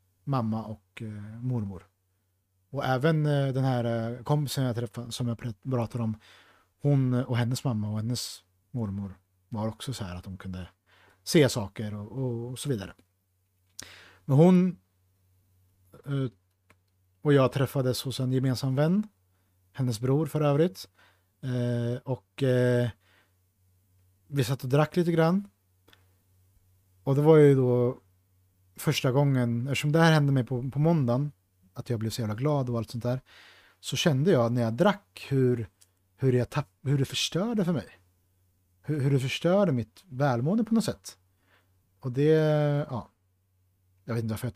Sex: male